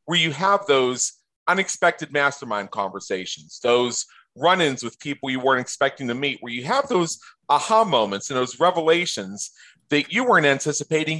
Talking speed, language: 155 wpm, English